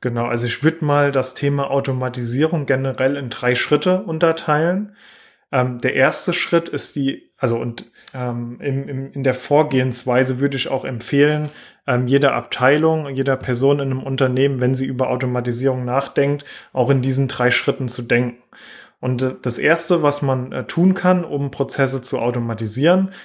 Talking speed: 155 wpm